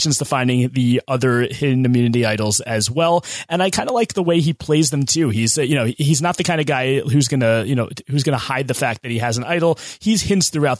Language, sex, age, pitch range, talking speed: English, male, 30-49, 115-155 Hz, 255 wpm